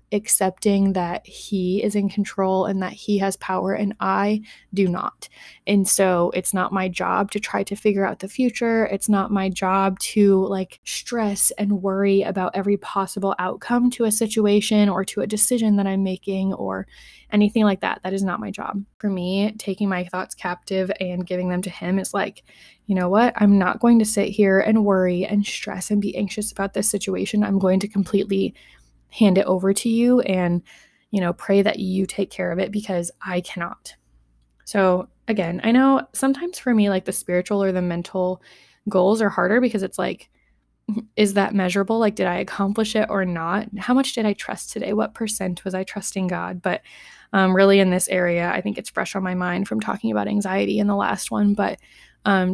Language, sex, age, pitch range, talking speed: English, female, 20-39, 185-210 Hz, 205 wpm